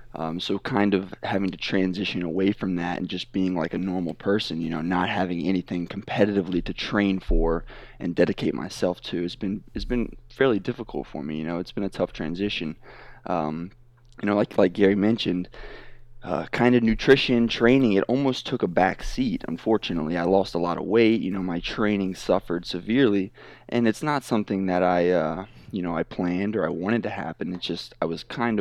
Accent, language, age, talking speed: American, English, 20-39, 200 wpm